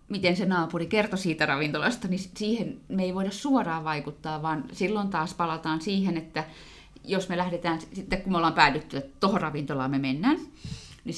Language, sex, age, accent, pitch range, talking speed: Finnish, female, 30-49, native, 160-220 Hz, 175 wpm